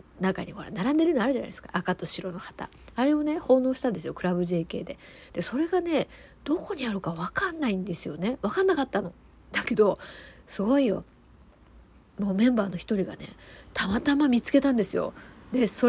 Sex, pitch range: female, 180-235 Hz